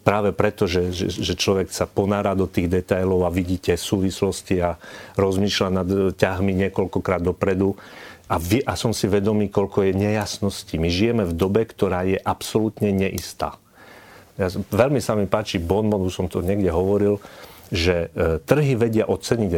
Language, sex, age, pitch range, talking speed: Slovak, male, 40-59, 95-110 Hz, 155 wpm